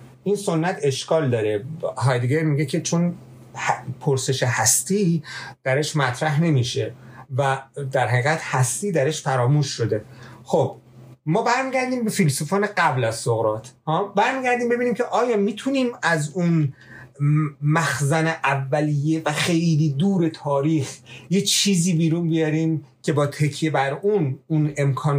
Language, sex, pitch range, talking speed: Persian, male, 125-165 Hz, 125 wpm